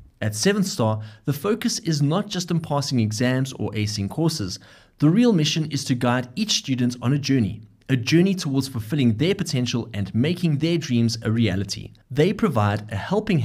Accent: German